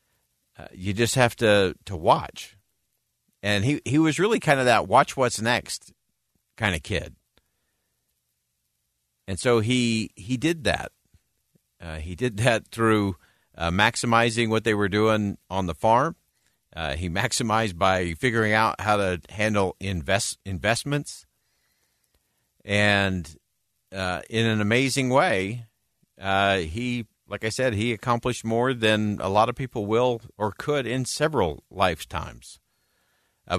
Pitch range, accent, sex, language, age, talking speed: 95-120 Hz, American, male, English, 50-69, 140 wpm